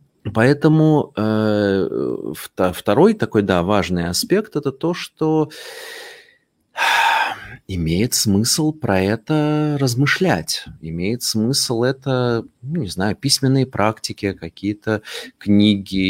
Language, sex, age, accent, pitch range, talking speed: Russian, male, 30-49, native, 95-135 Hz, 95 wpm